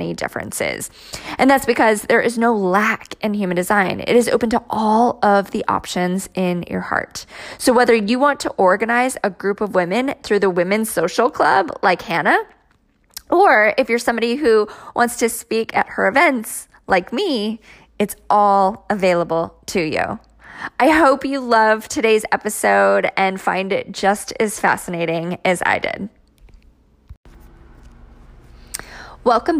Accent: American